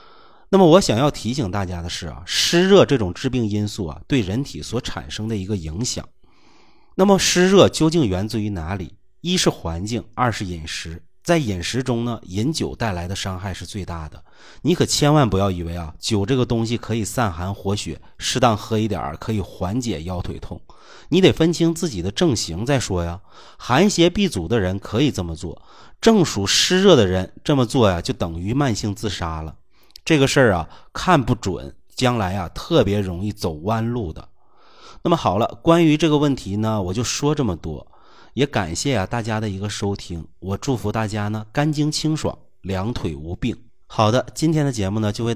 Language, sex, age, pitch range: Chinese, male, 30-49, 90-130 Hz